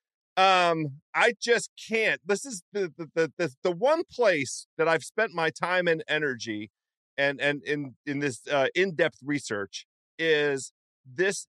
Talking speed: 150 wpm